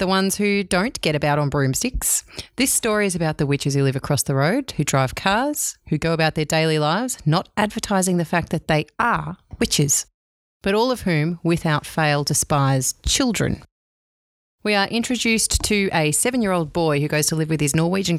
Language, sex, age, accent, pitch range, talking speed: English, female, 30-49, Australian, 145-185 Hz, 190 wpm